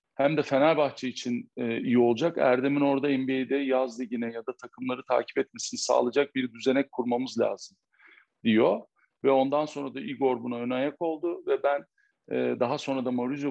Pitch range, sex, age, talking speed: 125-145 Hz, male, 50-69, 160 wpm